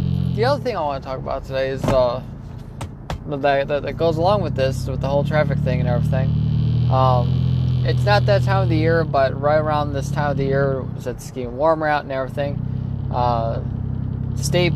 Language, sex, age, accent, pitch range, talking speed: English, male, 20-39, American, 130-150 Hz, 200 wpm